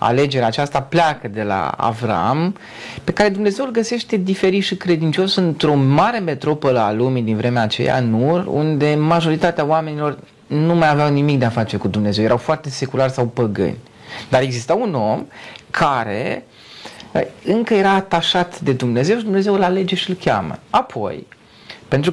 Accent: native